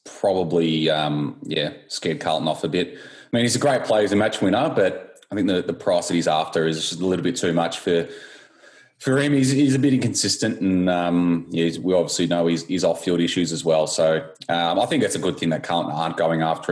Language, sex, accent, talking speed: English, male, Australian, 250 wpm